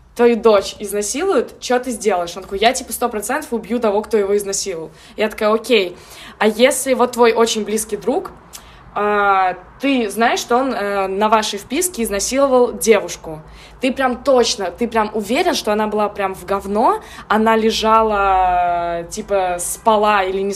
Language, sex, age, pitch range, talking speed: Russian, female, 20-39, 205-235 Hz, 155 wpm